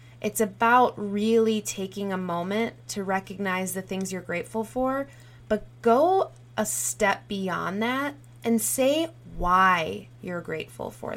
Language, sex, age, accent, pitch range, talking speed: English, female, 20-39, American, 160-215 Hz, 135 wpm